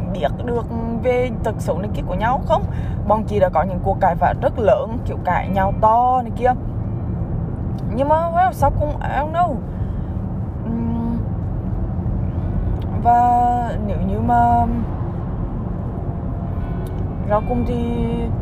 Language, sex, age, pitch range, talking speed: Vietnamese, female, 20-39, 95-115 Hz, 135 wpm